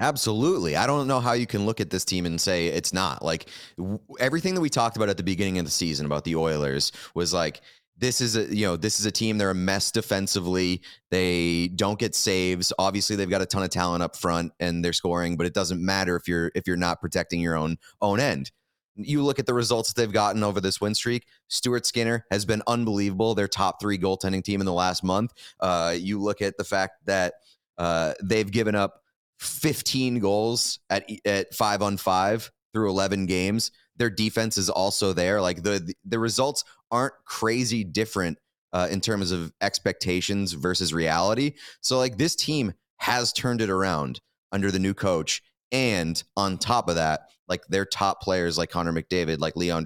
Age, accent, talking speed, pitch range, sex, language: 30-49, American, 200 wpm, 90-110 Hz, male, English